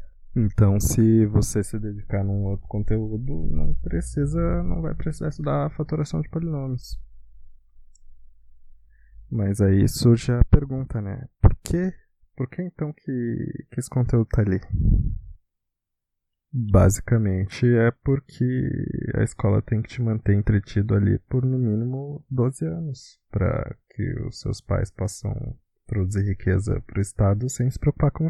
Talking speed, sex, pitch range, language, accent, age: 140 wpm, male, 100-130 Hz, Portuguese, Brazilian, 20-39